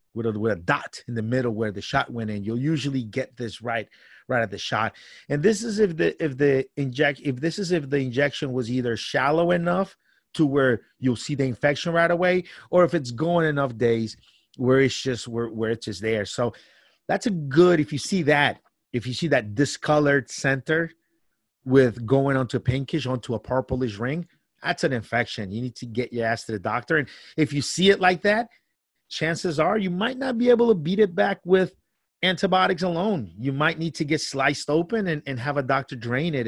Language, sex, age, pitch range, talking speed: English, male, 30-49, 125-170 Hz, 215 wpm